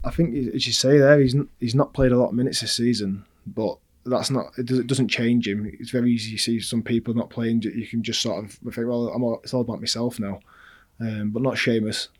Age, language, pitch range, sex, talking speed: 20-39, English, 110-120 Hz, male, 240 wpm